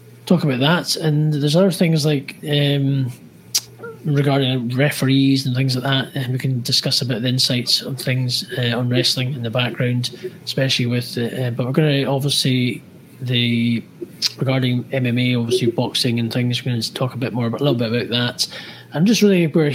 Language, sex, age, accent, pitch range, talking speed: English, male, 20-39, British, 120-140 Hz, 195 wpm